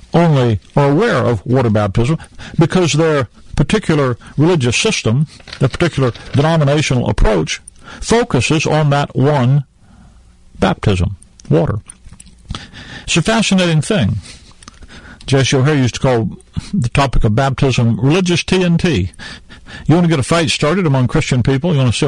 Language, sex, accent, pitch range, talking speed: English, male, American, 115-155 Hz, 135 wpm